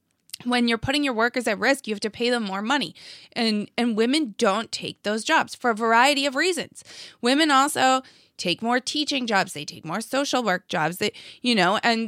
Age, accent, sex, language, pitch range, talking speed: 20-39, American, female, English, 180-230 Hz, 210 wpm